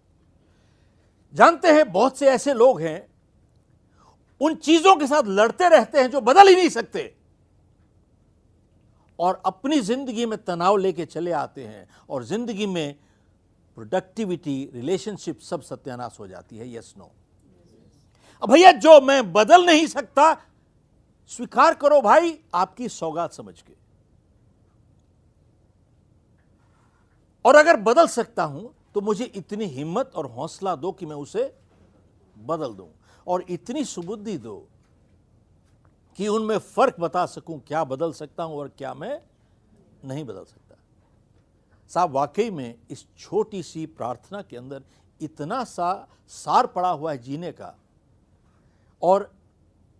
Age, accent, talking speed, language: 60-79, native, 130 wpm, Hindi